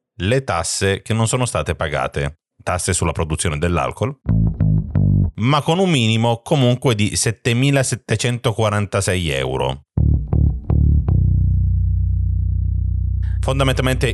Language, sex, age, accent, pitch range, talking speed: Italian, male, 40-59, native, 85-115 Hz, 85 wpm